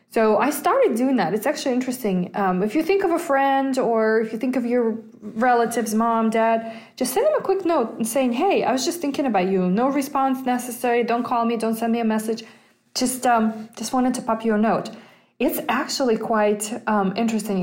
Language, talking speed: English, 215 wpm